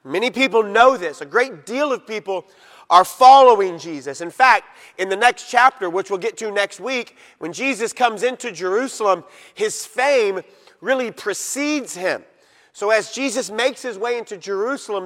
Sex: male